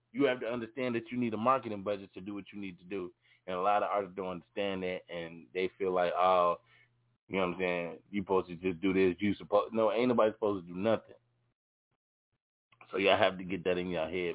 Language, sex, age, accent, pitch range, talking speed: English, male, 20-39, American, 90-110 Hz, 245 wpm